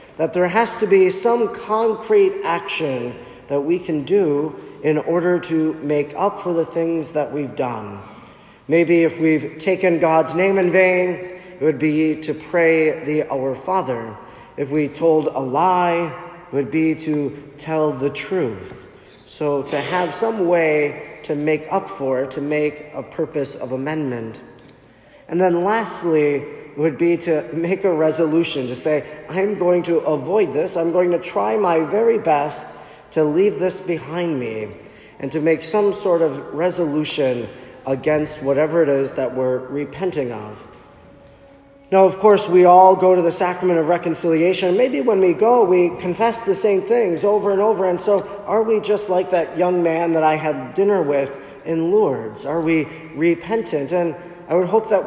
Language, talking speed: English, 170 wpm